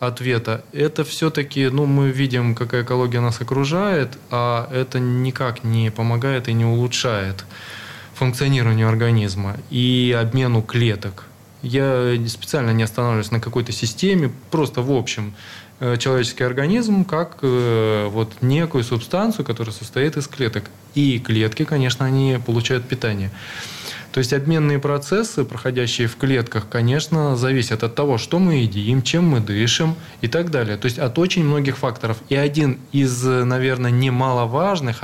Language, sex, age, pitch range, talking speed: Russian, male, 20-39, 115-145 Hz, 135 wpm